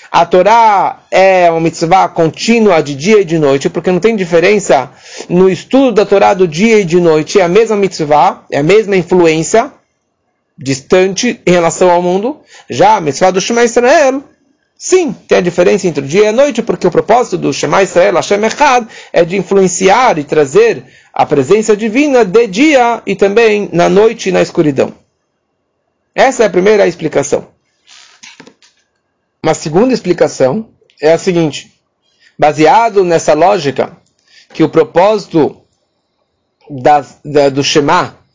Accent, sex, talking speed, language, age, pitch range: Brazilian, male, 155 wpm, English, 40-59, 165-220 Hz